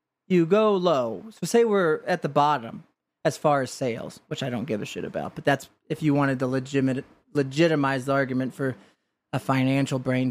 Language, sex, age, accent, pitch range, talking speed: English, male, 30-49, American, 145-180 Hz, 190 wpm